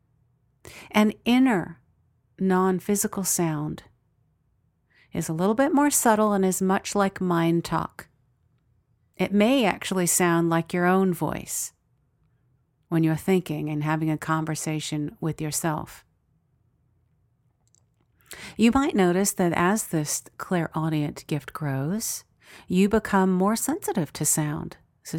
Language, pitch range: English, 145-190 Hz